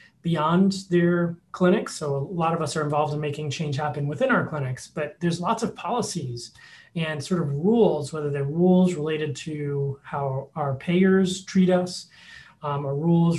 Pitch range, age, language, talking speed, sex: 145-180 Hz, 30-49, English, 175 wpm, male